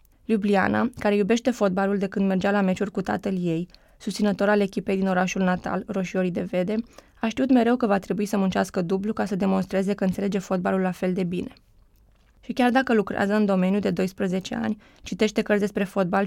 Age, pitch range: 20-39, 190-215 Hz